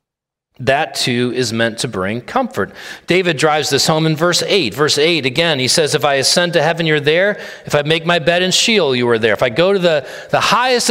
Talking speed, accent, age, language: 235 wpm, American, 40-59, English